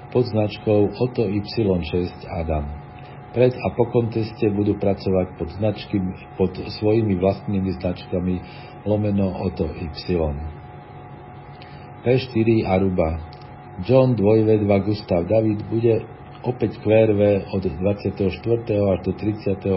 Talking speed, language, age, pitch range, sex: 105 wpm, Slovak, 50-69, 90-115 Hz, male